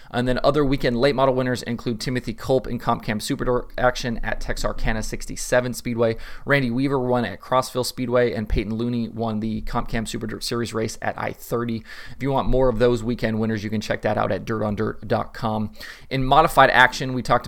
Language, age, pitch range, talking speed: English, 20-39, 110-125 Hz, 190 wpm